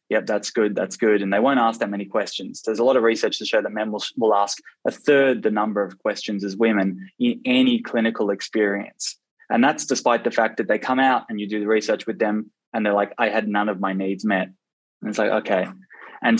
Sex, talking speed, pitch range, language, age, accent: male, 245 wpm, 100-120 Hz, English, 20-39, Australian